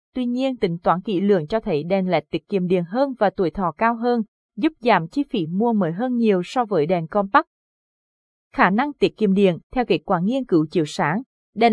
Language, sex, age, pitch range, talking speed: Vietnamese, female, 20-39, 185-250 Hz, 225 wpm